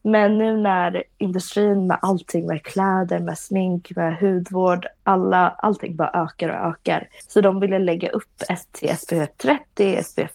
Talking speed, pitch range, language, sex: 155 wpm, 175-215 Hz, Swedish, female